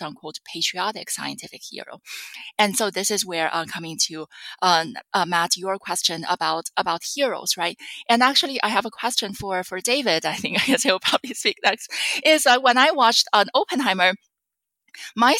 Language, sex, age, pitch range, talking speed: English, female, 20-39, 185-245 Hz, 185 wpm